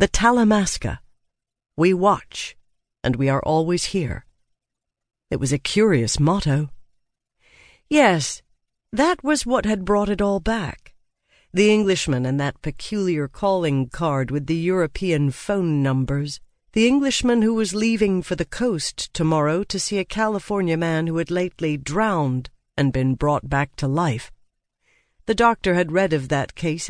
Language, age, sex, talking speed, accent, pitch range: English, 50-69, female, 145 wpm, American, 130-200 Hz